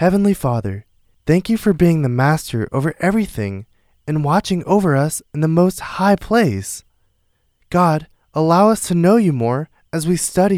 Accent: American